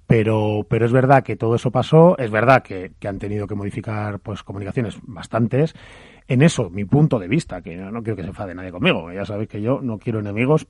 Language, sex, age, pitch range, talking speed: Spanish, male, 30-49, 95-125 Hz, 225 wpm